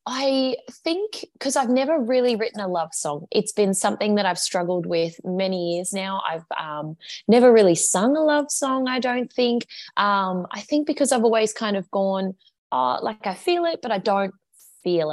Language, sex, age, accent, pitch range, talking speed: English, female, 20-39, Australian, 165-220 Hz, 190 wpm